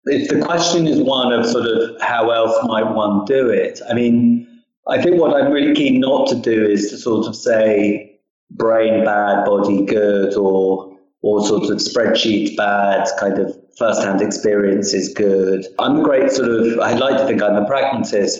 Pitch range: 100-115 Hz